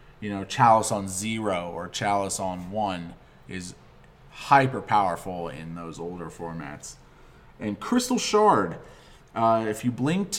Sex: male